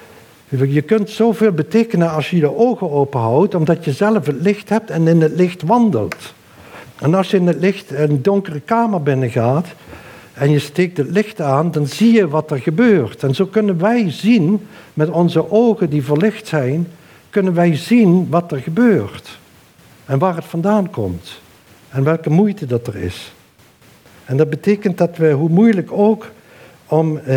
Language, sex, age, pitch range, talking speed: Dutch, male, 60-79, 140-185 Hz, 175 wpm